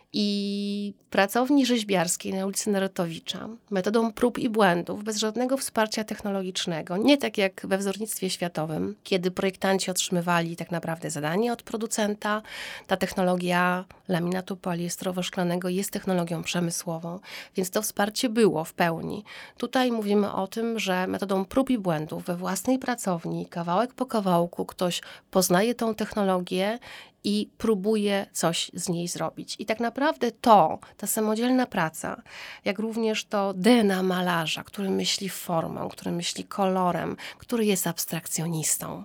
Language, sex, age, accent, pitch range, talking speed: Polish, female, 30-49, native, 180-220 Hz, 135 wpm